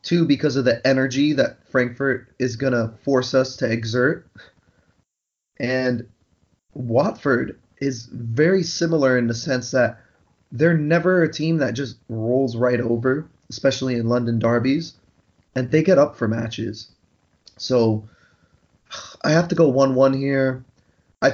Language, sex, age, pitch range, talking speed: English, male, 20-39, 115-135 Hz, 140 wpm